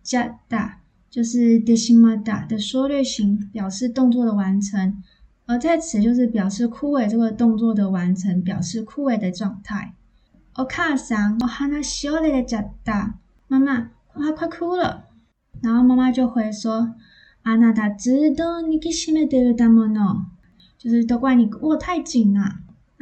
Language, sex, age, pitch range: Chinese, female, 20-39, 205-250 Hz